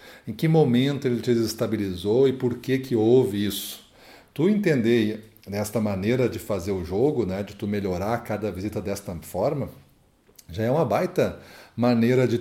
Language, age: Portuguese, 40-59